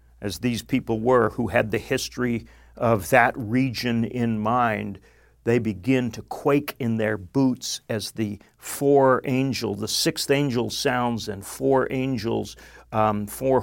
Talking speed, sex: 145 wpm, male